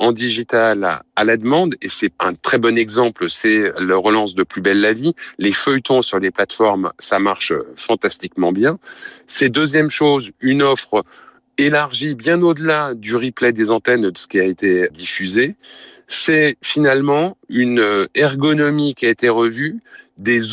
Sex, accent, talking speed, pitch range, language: male, French, 160 wpm, 115-145 Hz, French